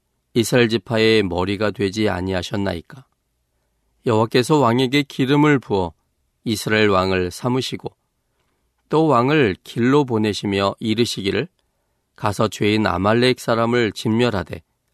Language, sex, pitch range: Korean, male, 100-125 Hz